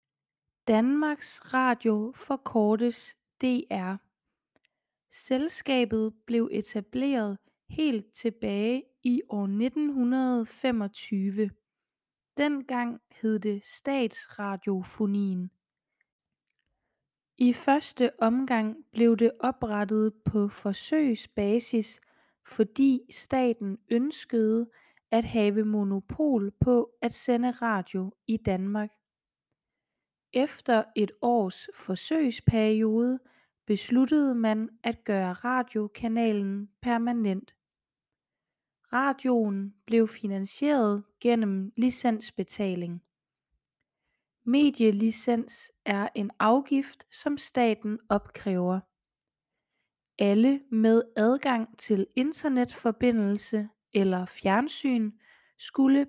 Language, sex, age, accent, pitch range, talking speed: Danish, female, 20-39, native, 210-255 Hz, 70 wpm